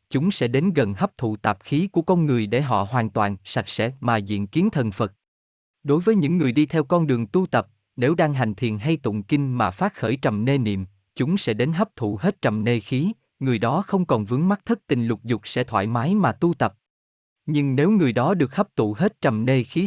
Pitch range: 110-155 Hz